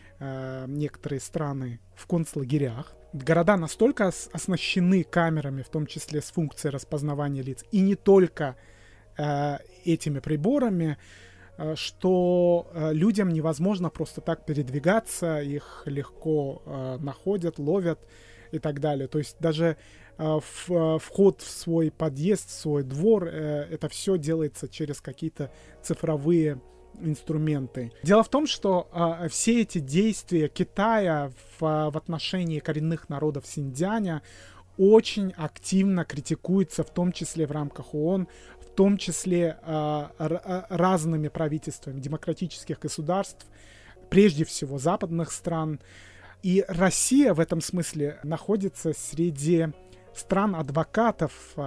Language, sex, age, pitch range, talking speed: Russian, male, 20-39, 145-175 Hz, 110 wpm